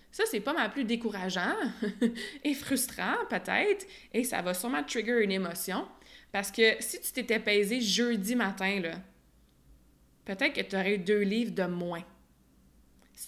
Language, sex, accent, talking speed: French, female, Canadian, 160 wpm